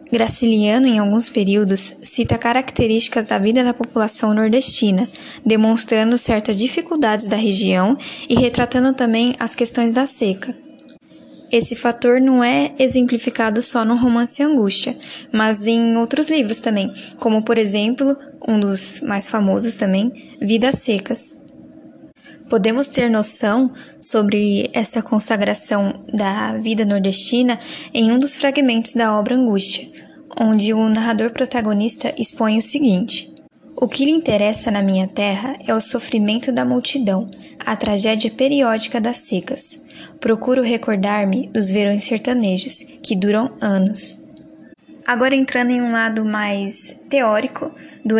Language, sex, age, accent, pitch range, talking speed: Portuguese, female, 10-29, Brazilian, 215-260 Hz, 130 wpm